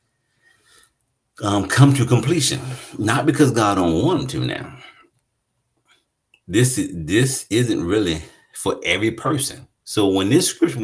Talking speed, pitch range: 125 wpm, 85-130 Hz